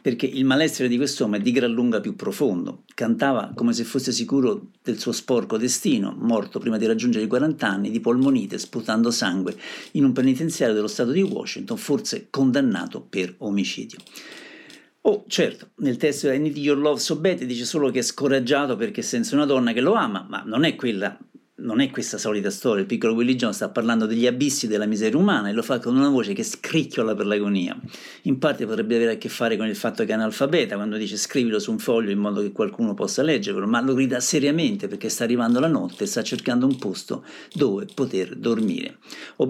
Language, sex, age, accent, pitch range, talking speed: Italian, male, 50-69, native, 115-145 Hz, 205 wpm